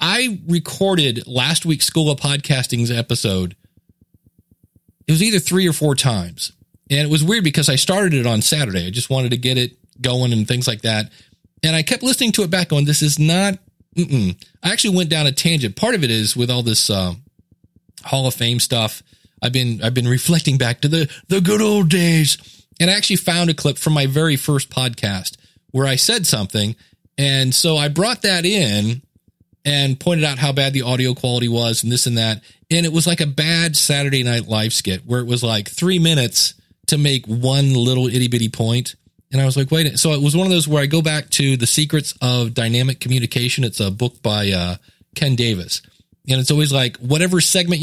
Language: English